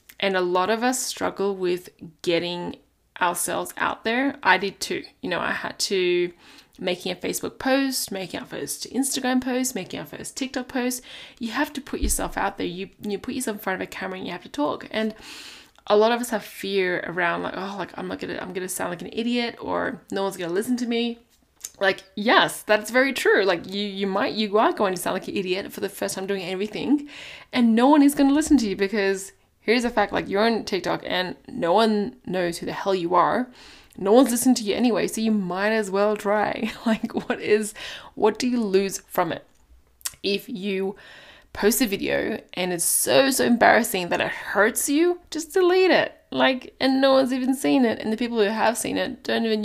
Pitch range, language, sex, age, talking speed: 195-255 Hz, English, female, 10-29, 225 wpm